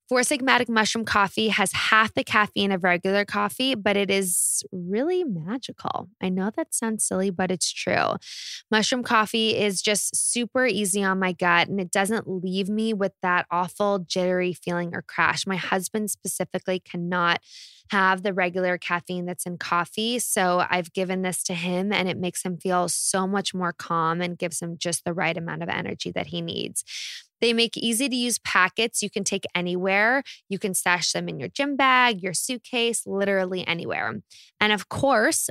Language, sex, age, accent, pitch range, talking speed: English, female, 20-39, American, 185-225 Hz, 185 wpm